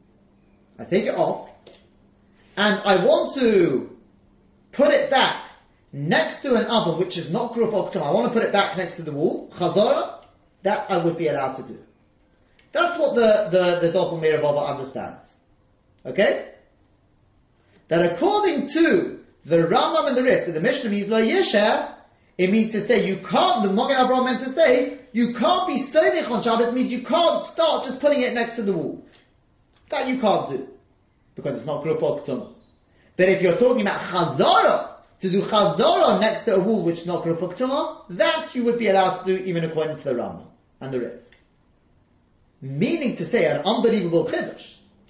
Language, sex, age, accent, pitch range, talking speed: English, male, 30-49, British, 175-255 Hz, 175 wpm